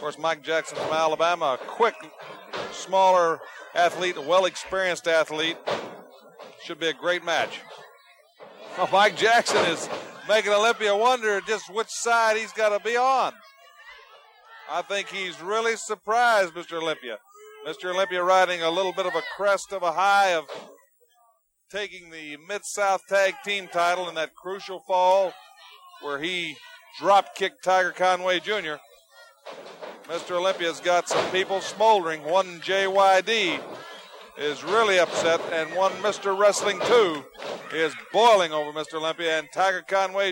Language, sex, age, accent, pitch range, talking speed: English, male, 50-69, American, 180-230 Hz, 140 wpm